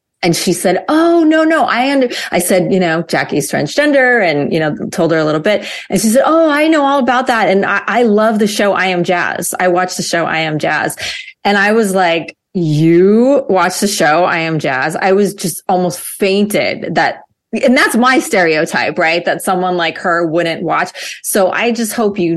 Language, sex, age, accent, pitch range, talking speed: English, female, 30-49, American, 165-215 Hz, 215 wpm